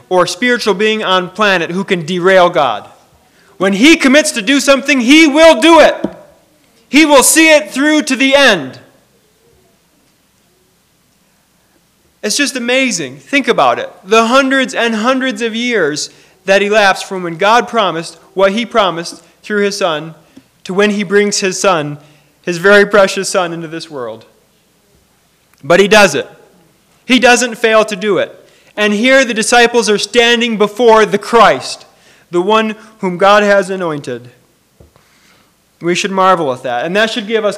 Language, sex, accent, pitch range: English, male, American, 180-240 Hz